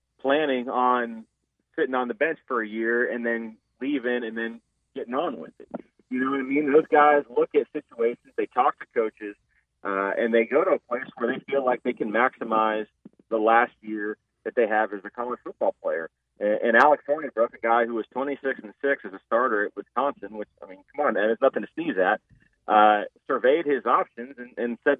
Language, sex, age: English, male, 30-49